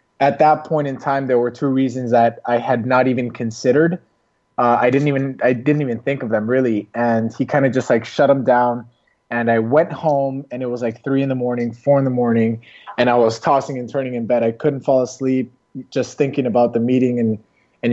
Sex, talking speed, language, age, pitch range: male, 235 wpm, English, 20-39, 115-135 Hz